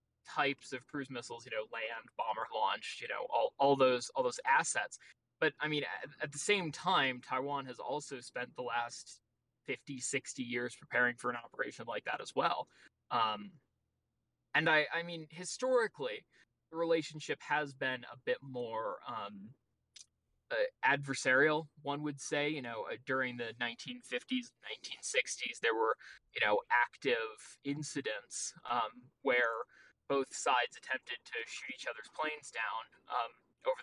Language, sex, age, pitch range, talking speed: English, male, 20-39, 130-195 Hz, 155 wpm